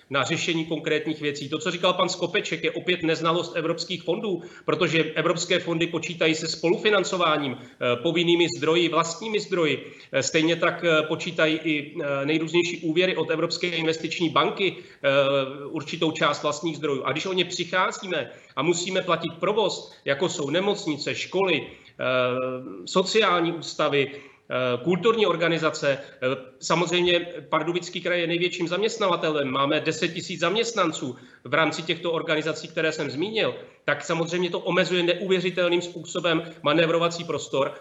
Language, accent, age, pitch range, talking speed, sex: Czech, native, 30-49, 155-180 Hz, 125 wpm, male